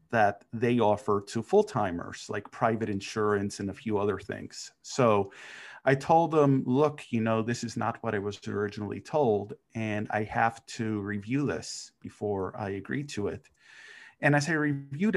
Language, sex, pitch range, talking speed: English, male, 110-135 Hz, 175 wpm